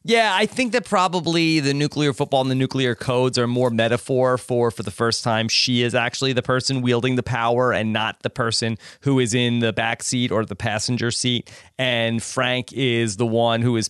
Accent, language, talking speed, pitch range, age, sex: American, English, 210 wpm, 120-170 Hz, 30-49, male